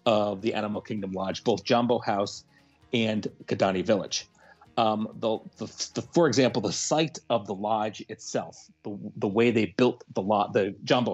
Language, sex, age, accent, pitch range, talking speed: English, male, 40-59, American, 95-120 Hz, 170 wpm